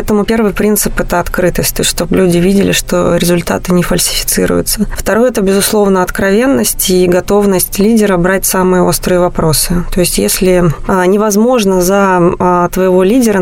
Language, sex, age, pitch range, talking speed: Russian, female, 20-39, 175-200 Hz, 145 wpm